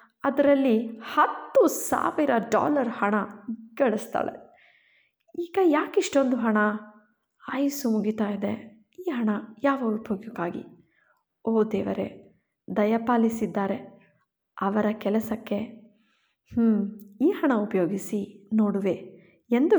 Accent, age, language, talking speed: native, 20-39, Kannada, 80 wpm